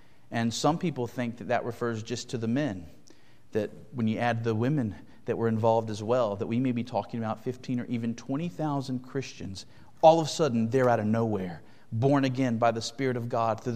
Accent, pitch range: American, 115-155 Hz